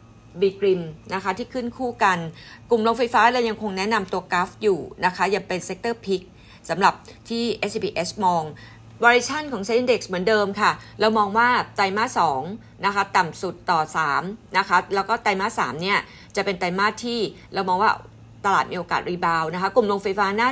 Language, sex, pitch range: Thai, female, 180-225 Hz